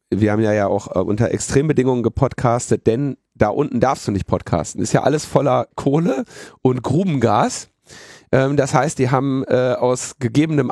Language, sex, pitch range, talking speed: German, male, 110-135 Hz, 150 wpm